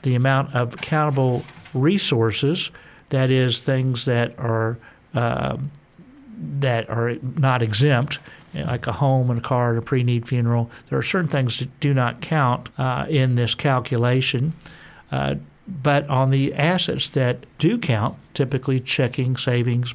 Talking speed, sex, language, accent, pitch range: 145 wpm, male, English, American, 120-145 Hz